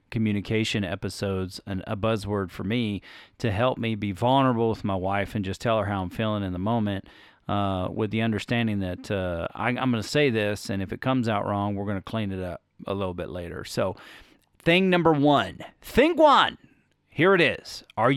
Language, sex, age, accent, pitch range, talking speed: English, male, 40-59, American, 95-120 Hz, 210 wpm